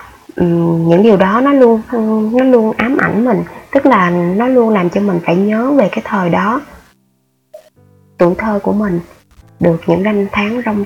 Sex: female